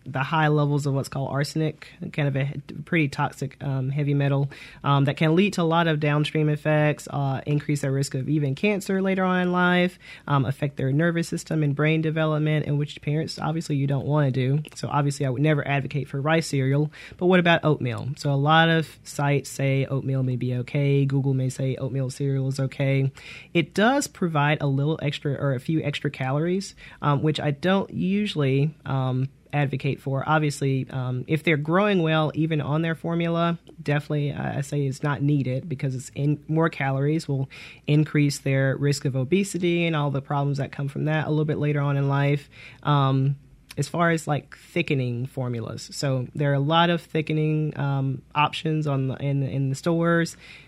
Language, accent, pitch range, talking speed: English, American, 135-160 Hz, 200 wpm